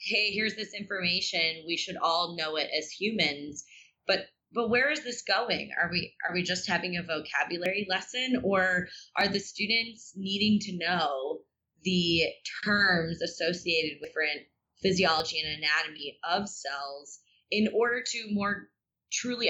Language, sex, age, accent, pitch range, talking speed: English, female, 20-39, American, 160-200 Hz, 150 wpm